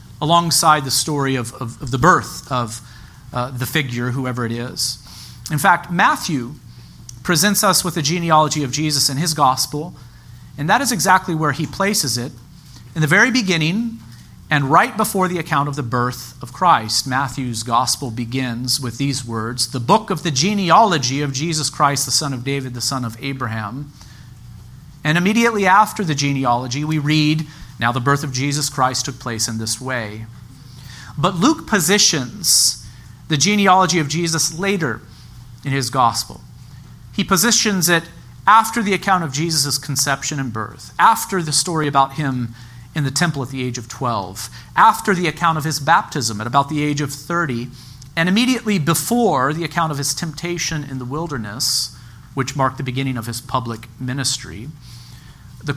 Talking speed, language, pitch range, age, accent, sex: 170 wpm, English, 125-165 Hz, 40-59, American, male